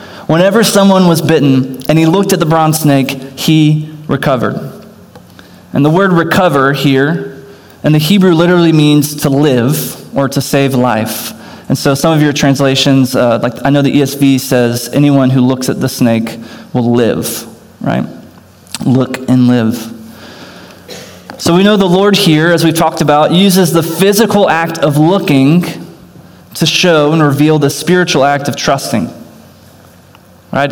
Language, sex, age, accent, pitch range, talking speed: English, male, 20-39, American, 125-165 Hz, 155 wpm